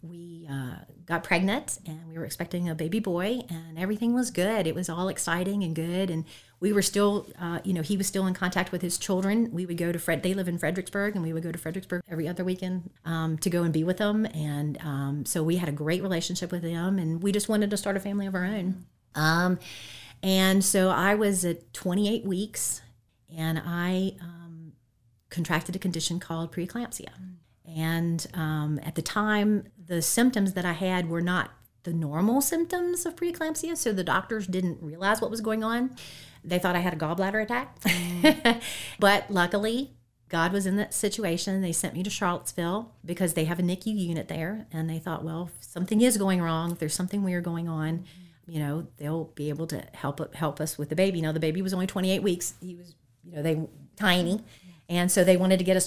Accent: American